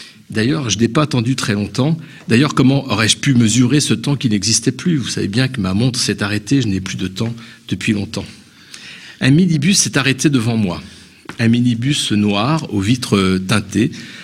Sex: male